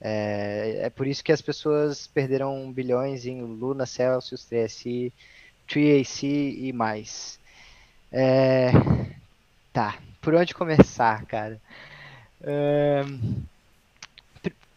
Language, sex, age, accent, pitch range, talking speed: Portuguese, male, 20-39, Brazilian, 125-155 Hz, 100 wpm